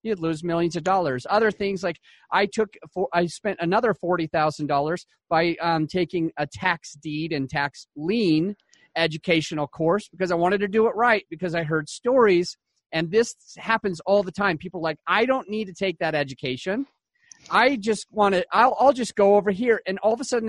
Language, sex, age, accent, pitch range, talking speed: English, male, 30-49, American, 175-220 Hz, 195 wpm